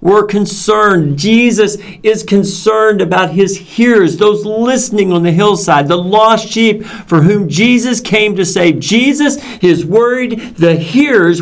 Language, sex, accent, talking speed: English, male, American, 140 wpm